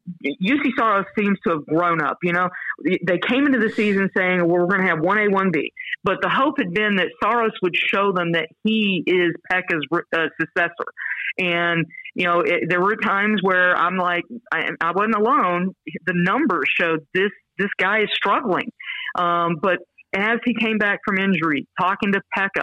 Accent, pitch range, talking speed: American, 170-205 Hz, 190 wpm